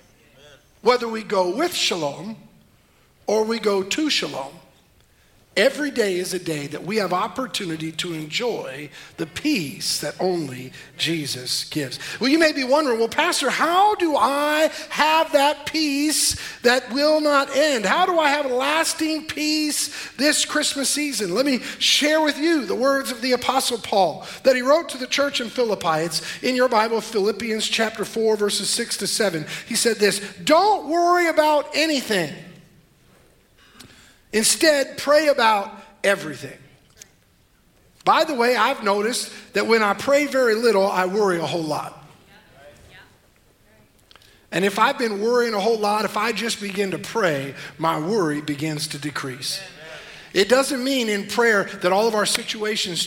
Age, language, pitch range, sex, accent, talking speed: 50-69, English, 180-285 Hz, male, American, 160 wpm